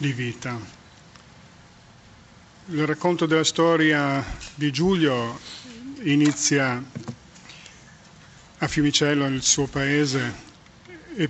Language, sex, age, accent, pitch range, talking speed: Italian, male, 40-59, native, 140-160 Hz, 80 wpm